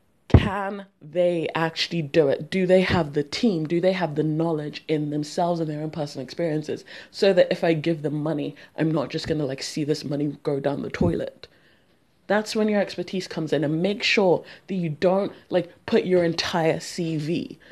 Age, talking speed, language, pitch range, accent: 20-39, 200 wpm, English, 155-185 Hz, British